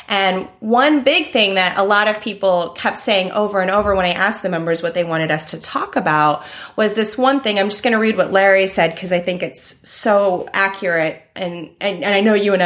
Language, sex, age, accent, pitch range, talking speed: English, female, 30-49, American, 180-230 Hz, 240 wpm